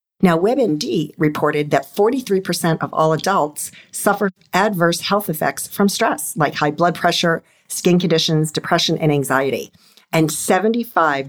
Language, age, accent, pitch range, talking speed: English, 50-69, American, 150-205 Hz, 135 wpm